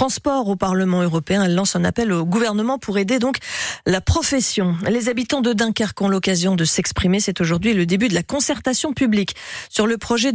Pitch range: 185-230 Hz